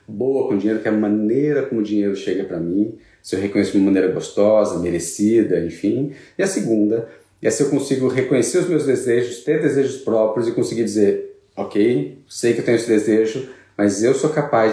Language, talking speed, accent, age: Portuguese, 210 wpm, Brazilian, 40-59